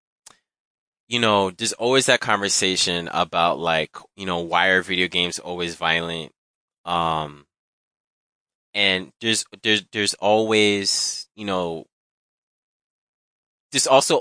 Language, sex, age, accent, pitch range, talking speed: English, male, 20-39, American, 90-110 Hz, 110 wpm